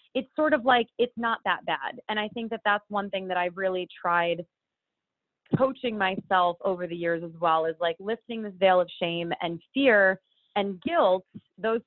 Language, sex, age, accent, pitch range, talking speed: English, female, 20-39, American, 180-220 Hz, 190 wpm